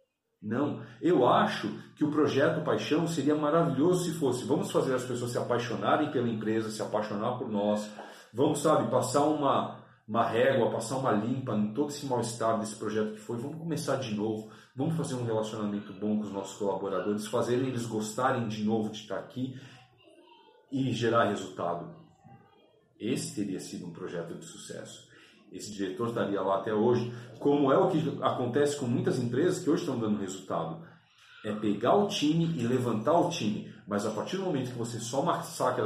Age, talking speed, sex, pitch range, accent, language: 40-59, 180 wpm, male, 105-140 Hz, Brazilian, Portuguese